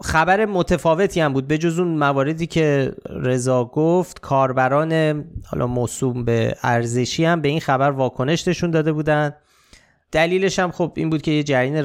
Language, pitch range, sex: Persian, 115-145 Hz, male